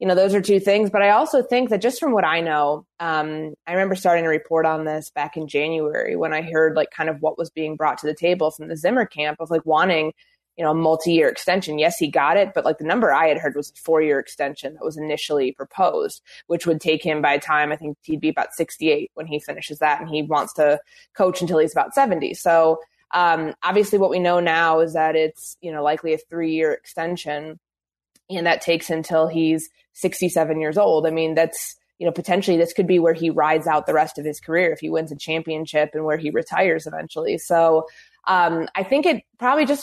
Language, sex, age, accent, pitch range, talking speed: English, female, 20-39, American, 155-180 Hz, 235 wpm